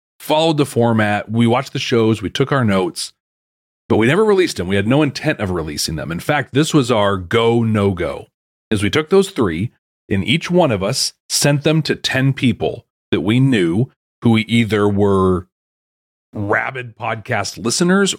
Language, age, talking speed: English, 40-59, 180 wpm